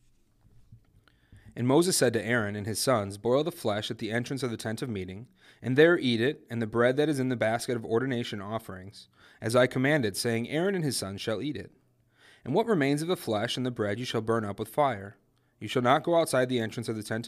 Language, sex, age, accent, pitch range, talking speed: English, male, 30-49, American, 105-130 Hz, 245 wpm